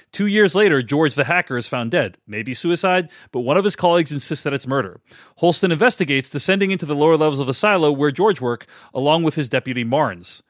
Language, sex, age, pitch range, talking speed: English, male, 40-59, 135-195 Hz, 215 wpm